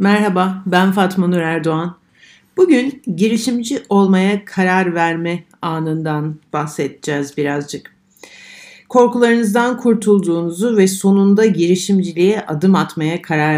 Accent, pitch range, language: native, 160-210 Hz, Turkish